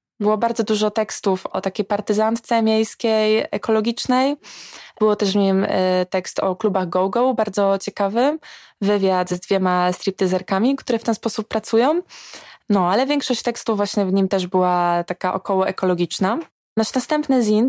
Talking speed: 145 wpm